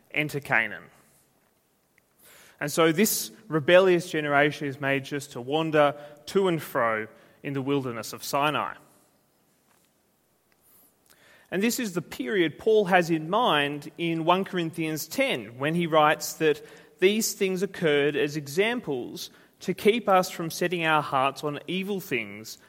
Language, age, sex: English, 30-49, male